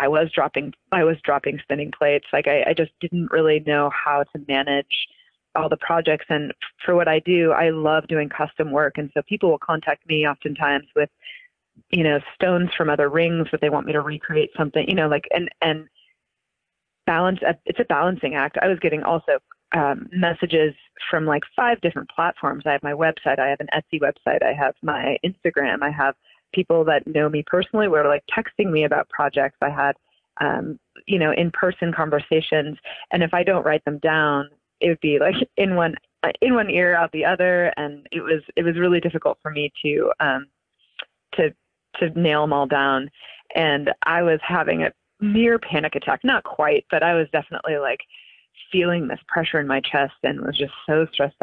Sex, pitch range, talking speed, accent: female, 145-175 Hz, 195 wpm, American